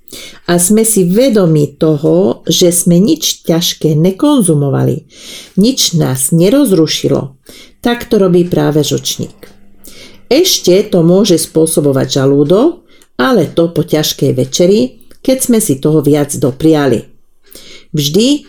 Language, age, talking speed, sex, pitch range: Slovak, 50-69, 115 wpm, female, 150-200 Hz